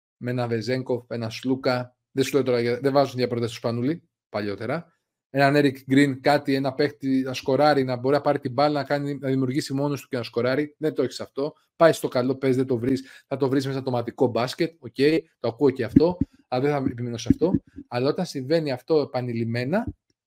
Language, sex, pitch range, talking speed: Greek, male, 125-165 Hz, 200 wpm